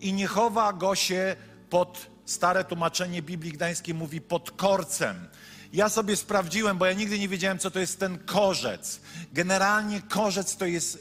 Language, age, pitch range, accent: Polish, 50-69, 175-210 Hz, native